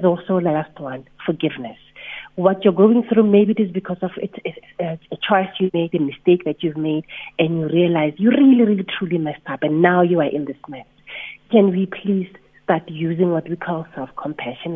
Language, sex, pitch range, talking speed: English, female, 160-190 Hz, 200 wpm